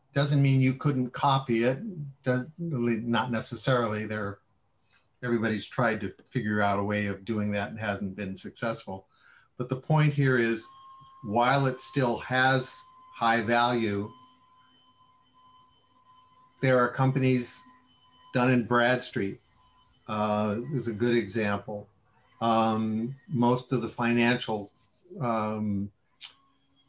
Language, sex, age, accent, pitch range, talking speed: English, male, 50-69, American, 110-130 Hz, 115 wpm